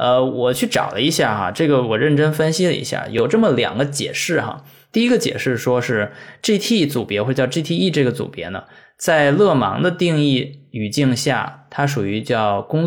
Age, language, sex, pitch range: 20-39, Chinese, male, 115-155 Hz